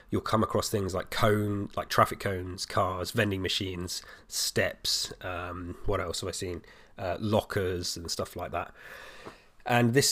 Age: 20-39